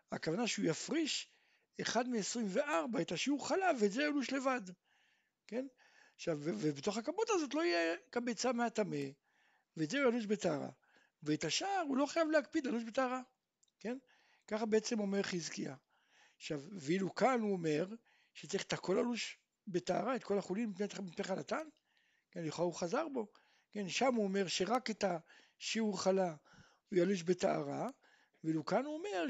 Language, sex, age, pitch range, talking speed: Hebrew, male, 60-79, 175-265 Hz, 145 wpm